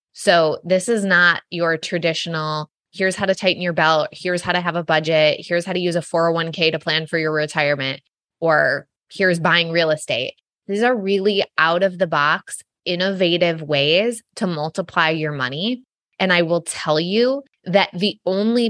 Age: 20-39